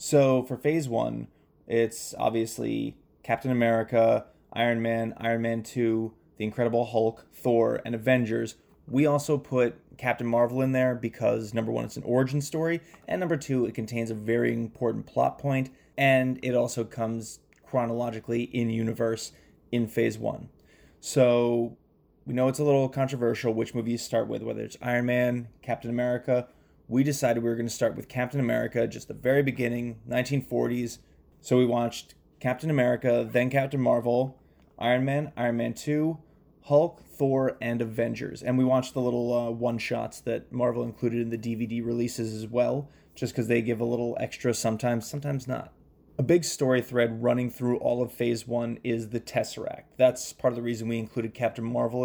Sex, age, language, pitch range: male, 20-39, English, 115-130 Hz